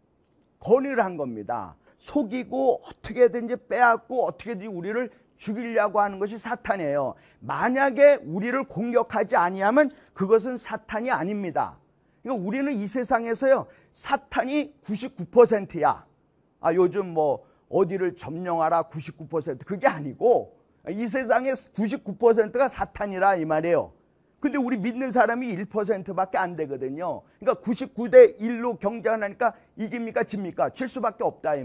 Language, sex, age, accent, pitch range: Korean, male, 40-59, native, 195-260 Hz